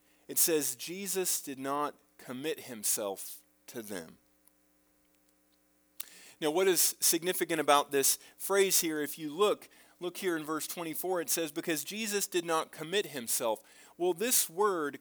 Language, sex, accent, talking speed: English, male, American, 145 wpm